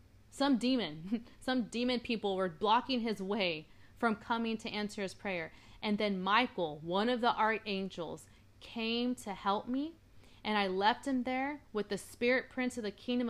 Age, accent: 30-49, American